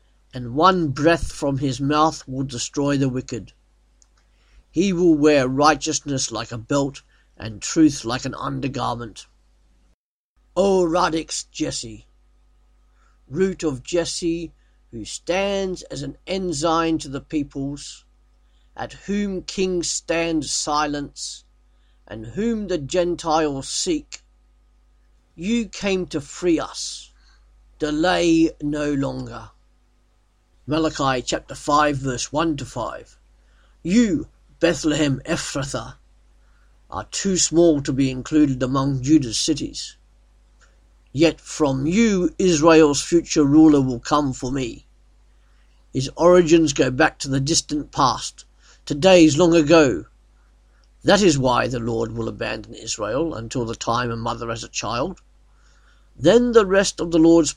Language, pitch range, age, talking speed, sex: English, 115-165 Hz, 50-69, 120 wpm, male